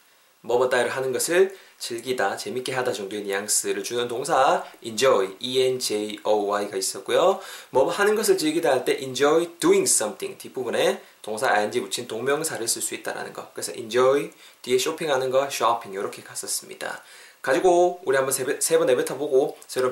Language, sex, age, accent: Korean, male, 20-39, native